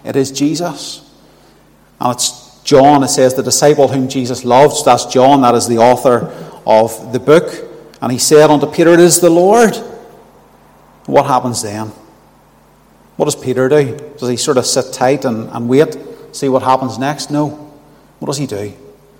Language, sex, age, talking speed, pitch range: English, male, 30-49, 175 wpm, 110-140 Hz